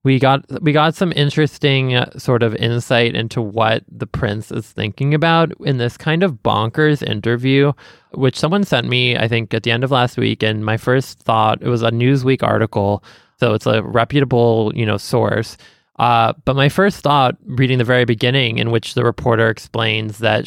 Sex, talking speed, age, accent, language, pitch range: male, 190 wpm, 20-39, American, English, 115-140 Hz